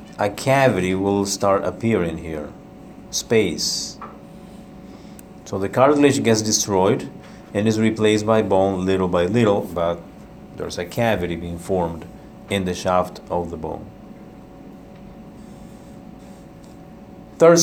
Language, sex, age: English, male, 50-69